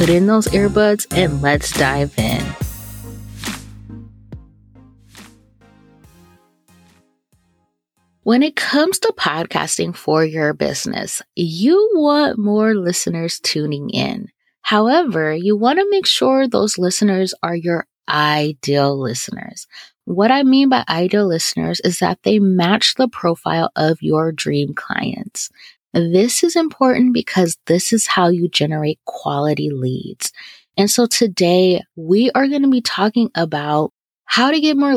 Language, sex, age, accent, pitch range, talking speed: English, female, 30-49, American, 150-230 Hz, 130 wpm